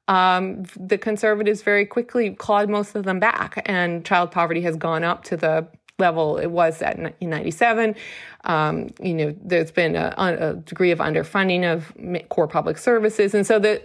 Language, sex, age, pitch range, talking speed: English, female, 30-49, 165-210 Hz, 180 wpm